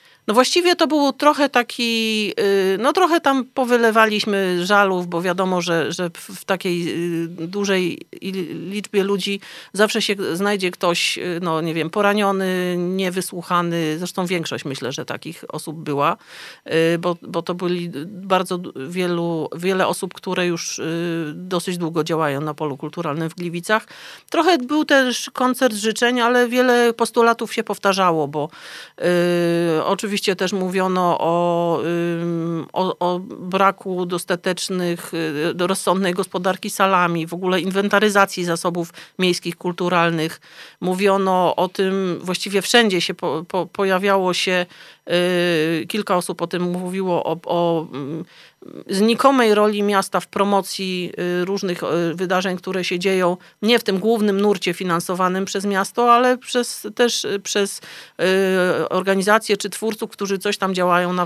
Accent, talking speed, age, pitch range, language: native, 125 wpm, 40-59, 175-210 Hz, Polish